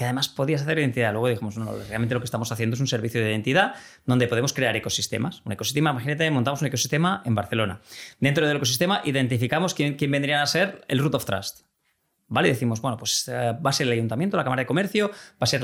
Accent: Spanish